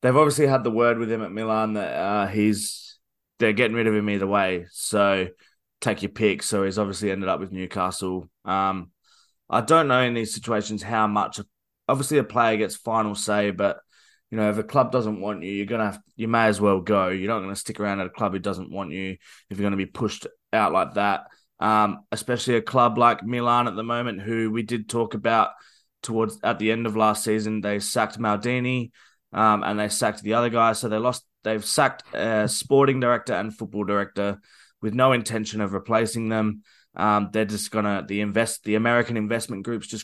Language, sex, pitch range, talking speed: English, male, 105-120 Hz, 210 wpm